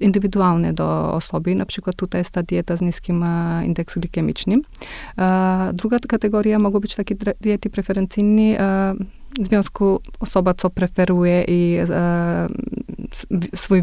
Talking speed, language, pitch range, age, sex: 115 wpm, Polish, 175-200 Hz, 20-39, female